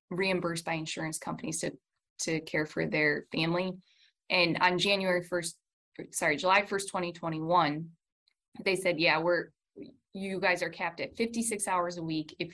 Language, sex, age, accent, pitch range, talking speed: English, female, 20-39, American, 170-200 Hz, 155 wpm